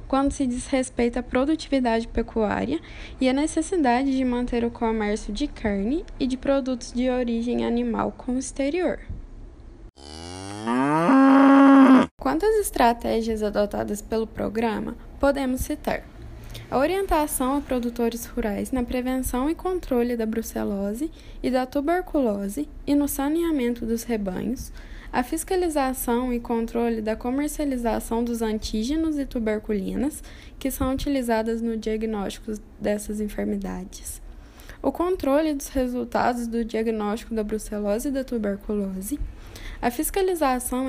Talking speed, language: 115 wpm, Portuguese